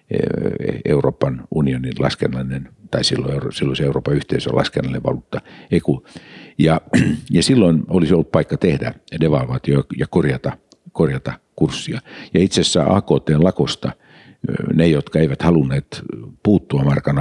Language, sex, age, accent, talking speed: Finnish, male, 50-69, native, 115 wpm